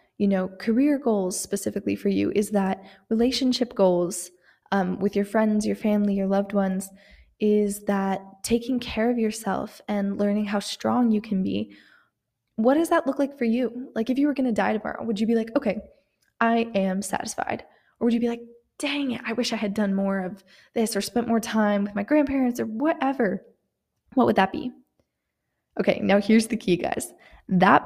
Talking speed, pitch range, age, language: 195 wpm, 195-240 Hz, 20-39, English